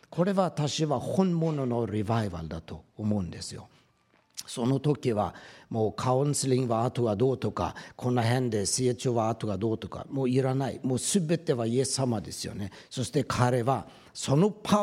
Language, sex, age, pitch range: Japanese, male, 60-79, 120-160 Hz